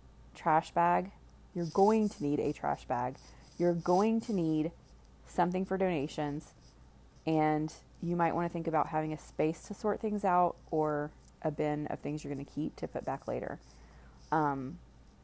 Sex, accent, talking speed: female, American, 175 wpm